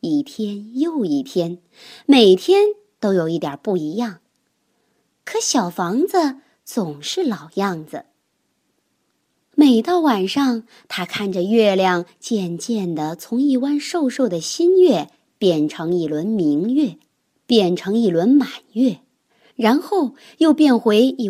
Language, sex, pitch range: Chinese, male, 185-290 Hz